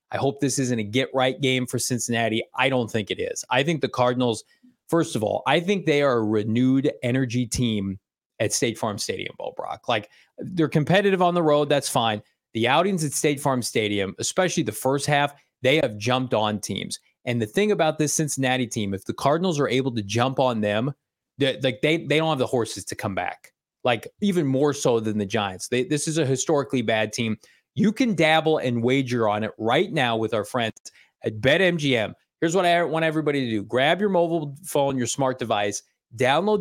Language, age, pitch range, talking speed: English, 20-39, 120-160 Hz, 210 wpm